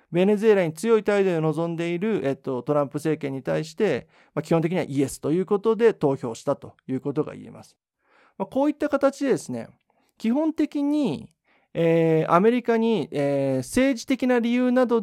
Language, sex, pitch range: Japanese, male, 135-205 Hz